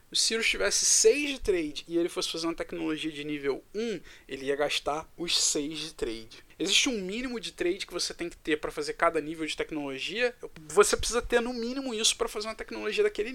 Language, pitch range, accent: Portuguese, 155-225 Hz, Brazilian